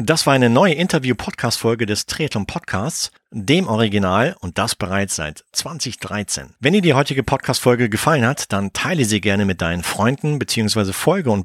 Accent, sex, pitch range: German, male, 105-135 Hz